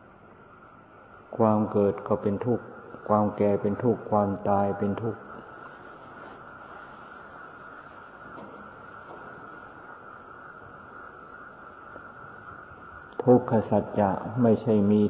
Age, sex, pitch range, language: 60-79, male, 100-120 Hz, Thai